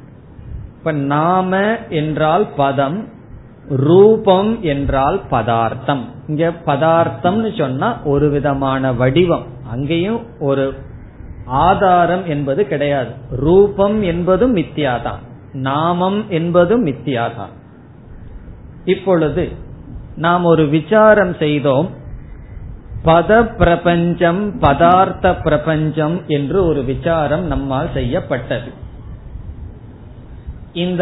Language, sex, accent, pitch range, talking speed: Tamil, male, native, 135-180 Hz, 75 wpm